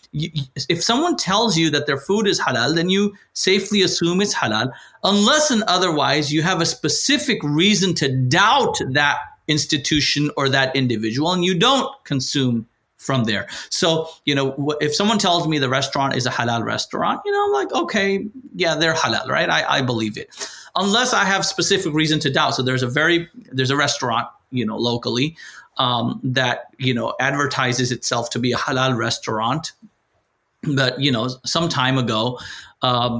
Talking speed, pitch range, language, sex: 175 wpm, 125-180 Hz, English, male